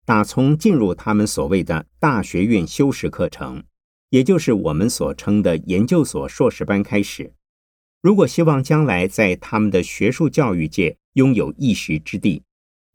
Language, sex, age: Chinese, male, 50-69